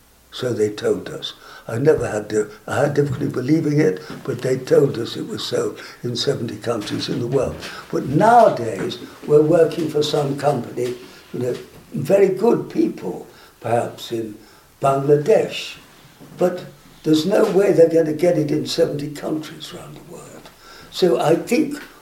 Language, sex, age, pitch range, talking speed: English, male, 60-79, 140-165 Hz, 160 wpm